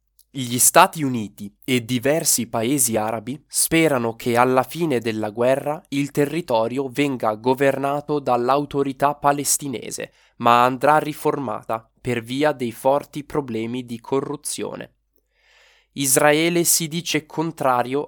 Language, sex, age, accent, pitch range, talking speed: English, male, 20-39, Italian, 120-150 Hz, 110 wpm